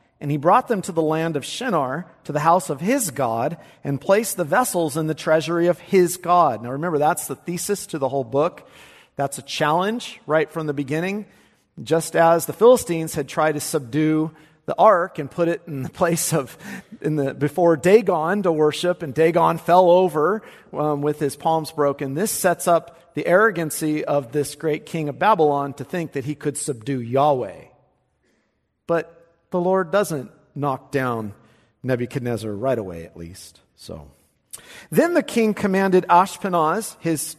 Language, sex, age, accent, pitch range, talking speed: English, male, 50-69, American, 145-175 Hz, 175 wpm